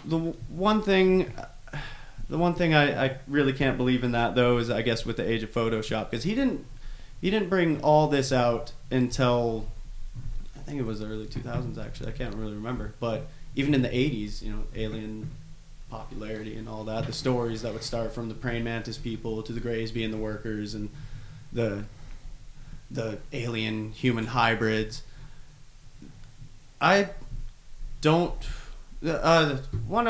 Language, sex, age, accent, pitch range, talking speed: English, male, 30-49, American, 115-140 Hz, 160 wpm